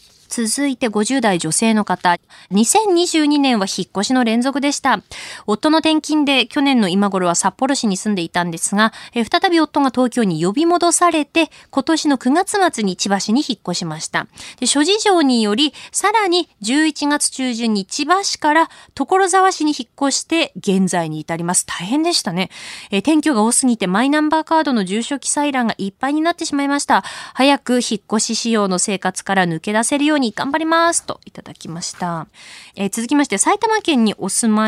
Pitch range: 195-285 Hz